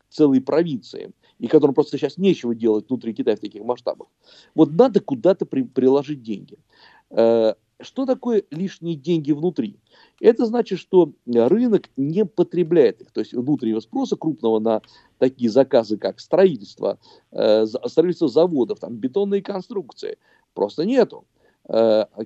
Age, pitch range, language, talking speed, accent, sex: 50-69, 125-205 Hz, Russian, 140 wpm, native, male